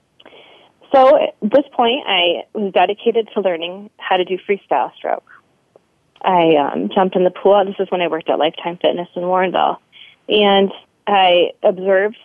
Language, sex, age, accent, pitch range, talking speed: English, female, 30-49, American, 175-225 Hz, 160 wpm